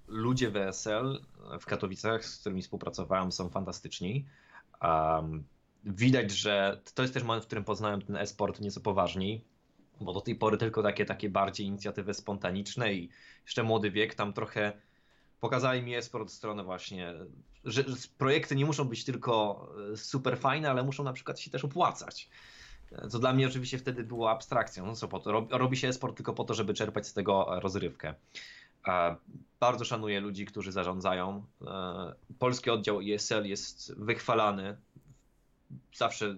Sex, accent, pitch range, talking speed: male, native, 100-125 Hz, 155 wpm